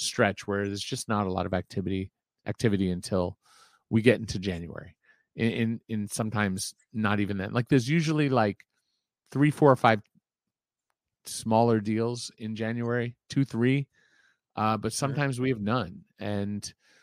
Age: 40-59